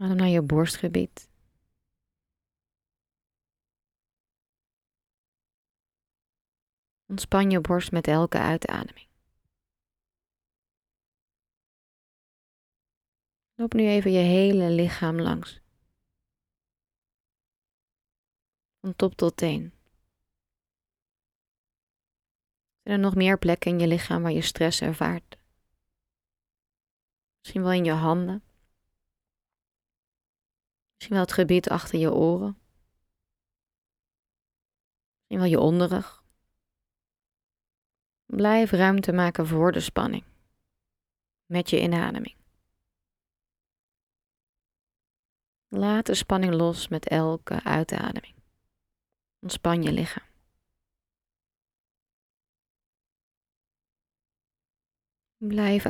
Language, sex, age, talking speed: Dutch, female, 20-39, 75 wpm